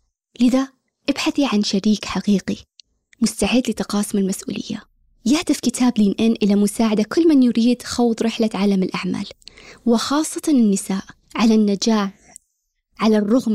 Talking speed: 120 wpm